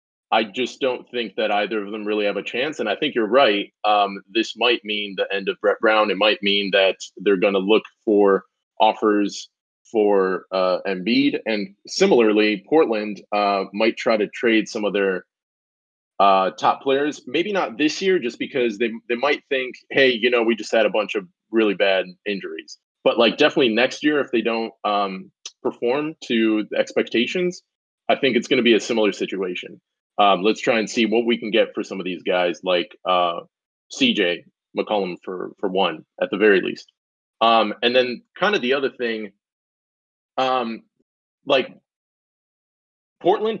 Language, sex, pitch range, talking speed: English, male, 100-130 Hz, 185 wpm